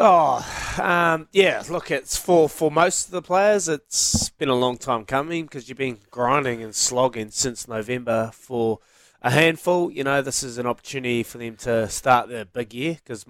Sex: male